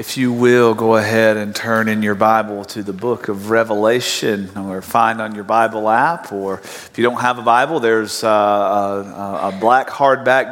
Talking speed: 190 wpm